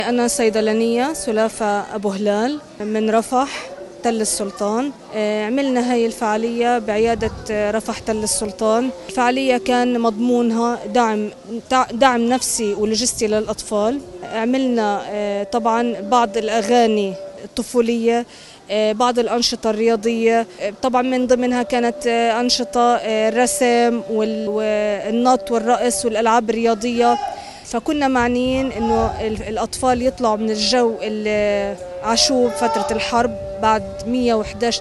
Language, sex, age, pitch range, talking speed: Arabic, female, 20-39, 215-245 Hz, 95 wpm